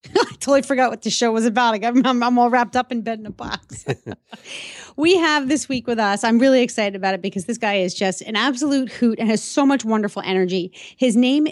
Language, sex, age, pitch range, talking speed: English, female, 30-49, 200-255 Hz, 240 wpm